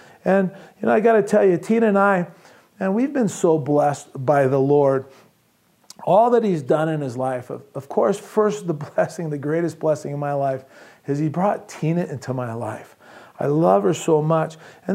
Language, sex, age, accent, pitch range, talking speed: English, male, 40-59, American, 155-215 Hz, 205 wpm